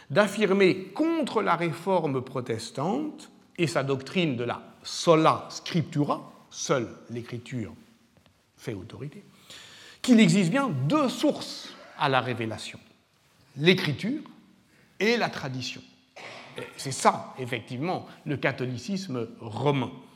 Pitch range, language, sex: 135-210 Hz, French, male